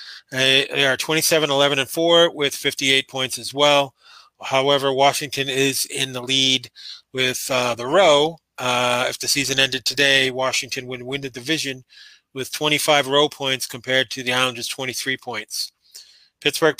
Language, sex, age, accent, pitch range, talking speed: English, male, 30-49, American, 135-155 Hz, 155 wpm